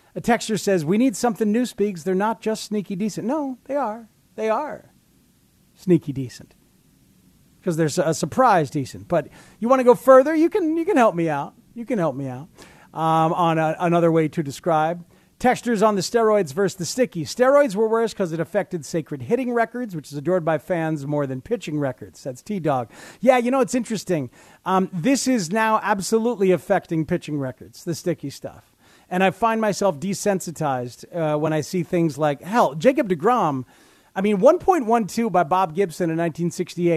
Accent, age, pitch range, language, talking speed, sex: American, 40-59, 155-220 Hz, English, 180 wpm, male